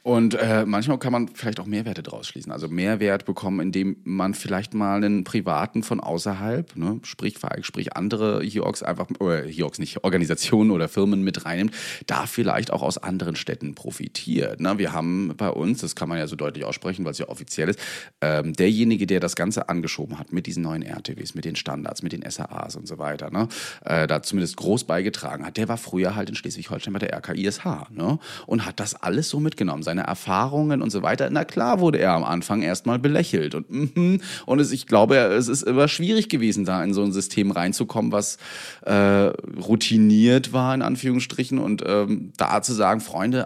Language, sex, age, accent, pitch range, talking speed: German, male, 40-59, German, 95-115 Hz, 195 wpm